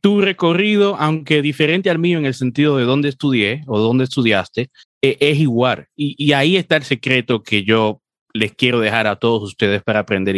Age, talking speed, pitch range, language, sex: 30-49, 190 wpm, 110-145 Hz, Spanish, male